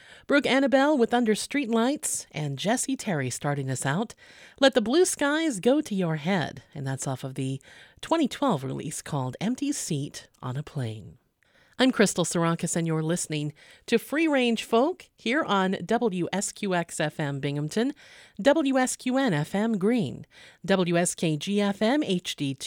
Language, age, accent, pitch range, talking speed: English, 40-59, American, 155-245 Hz, 130 wpm